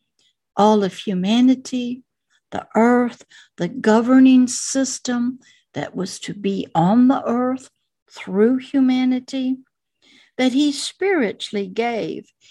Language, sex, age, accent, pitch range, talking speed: English, female, 60-79, American, 200-255 Hz, 100 wpm